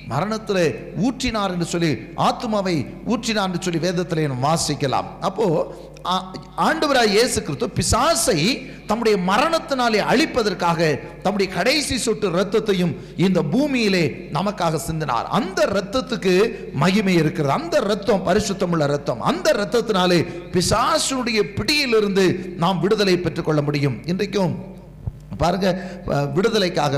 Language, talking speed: Tamil, 90 wpm